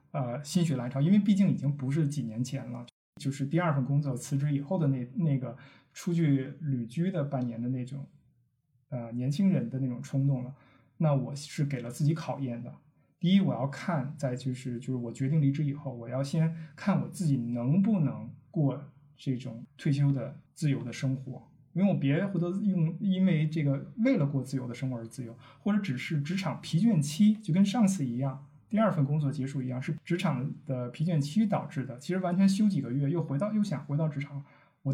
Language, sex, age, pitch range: Chinese, male, 20-39, 130-165 Hz